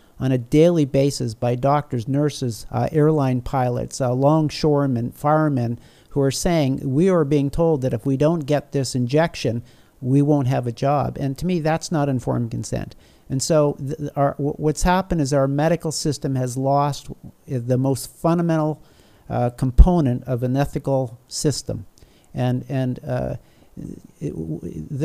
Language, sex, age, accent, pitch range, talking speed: English, male, 50-69, American, 130-150 Hz, 155 wpm